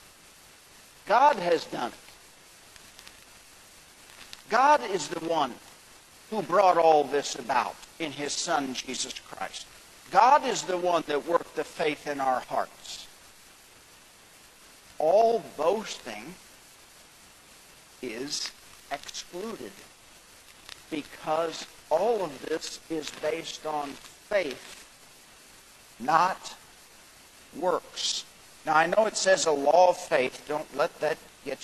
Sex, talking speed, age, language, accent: male, 105 wpm, 60-79, English, American